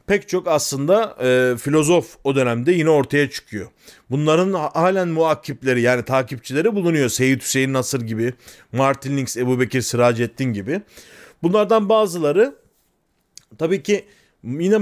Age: 40-59